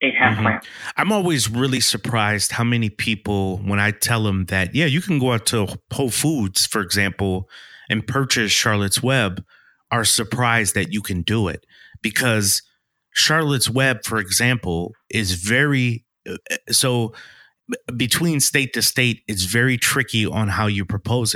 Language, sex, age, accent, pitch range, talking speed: English, male, 30-49, American, 100-125 Hz, 150 wpm